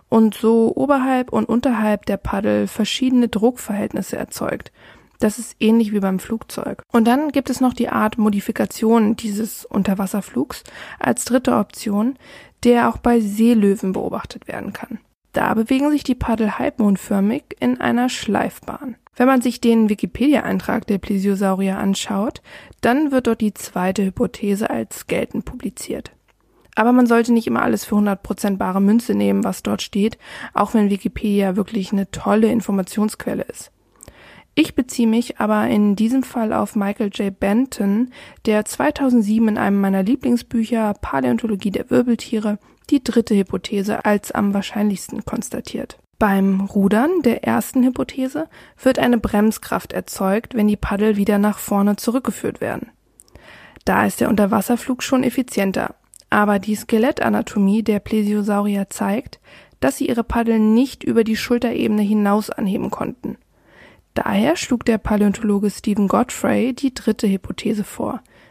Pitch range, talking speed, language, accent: 205-245 Hz, 140 wpm, German, German